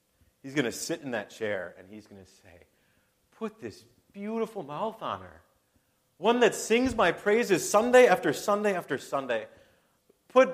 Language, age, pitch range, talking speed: English, 30-49, 130-205 Hz, 165 wpm